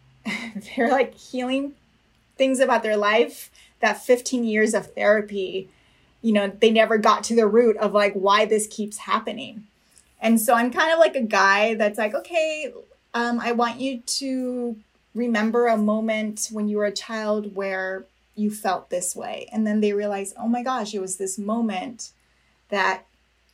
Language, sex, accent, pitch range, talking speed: English, female, American, 205-245 Hz, 170 wpm